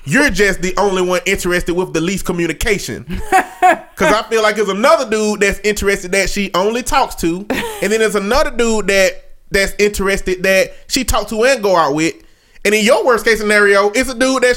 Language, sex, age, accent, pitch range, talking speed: English, male, 30-49, American, 180-245 Hz, 205 wpm